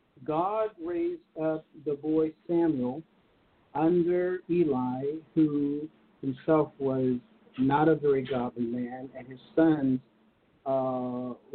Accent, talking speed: American, 105 wpm